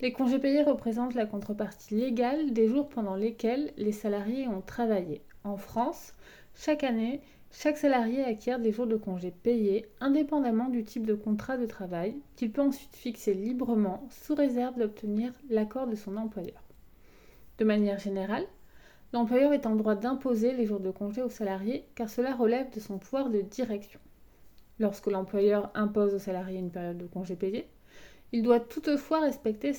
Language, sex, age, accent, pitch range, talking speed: English, female, 30-49, French, 210-260 Hz, 165 wpm